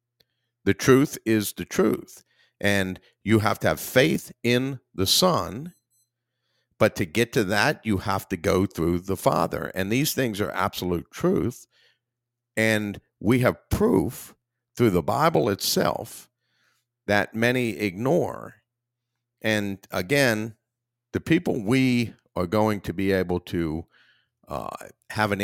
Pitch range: 100-120 Hz